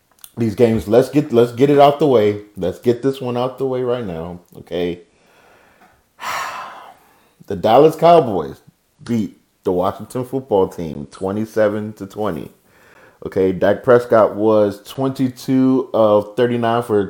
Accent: American